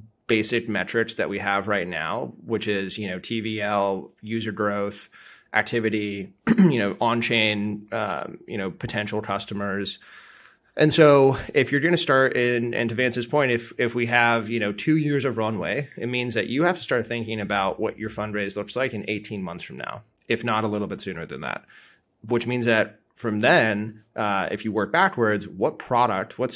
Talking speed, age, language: 190 wpm, 20-39, English